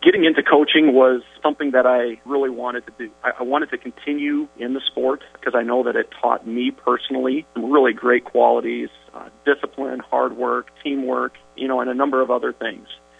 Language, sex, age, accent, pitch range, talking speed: English, male, 40-59, American, 115-135 Hz, 190 wpm